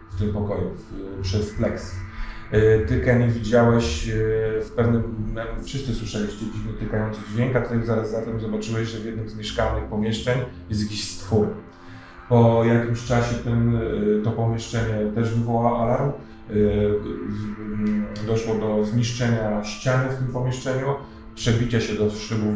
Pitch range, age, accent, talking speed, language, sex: 105-120 Hz, 30-49, native, 130 wpm, Polish, male